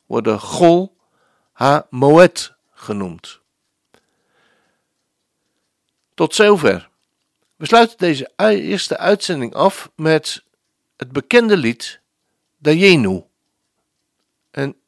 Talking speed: 75 wpm